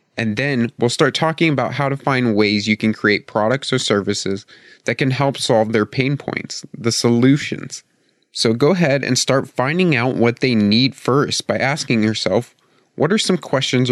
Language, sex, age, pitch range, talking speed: English, male, 30-49, 105-135 Hz, 185 wpm